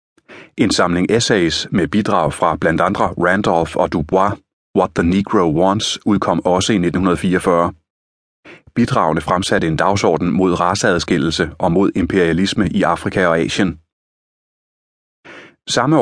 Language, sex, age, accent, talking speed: Danish, male, 30-49, native, 125 wpm